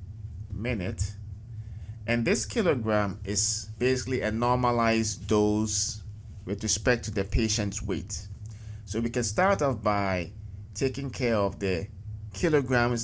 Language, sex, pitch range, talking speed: English, male, 100-115 Hz, 120 wpm